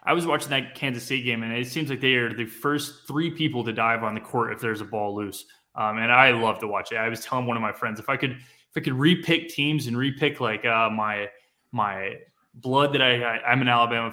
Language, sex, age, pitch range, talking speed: English, male, 20-39, 110-140 Hz, 265 wpm